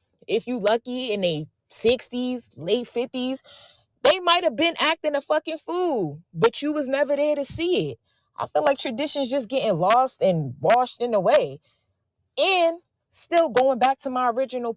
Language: English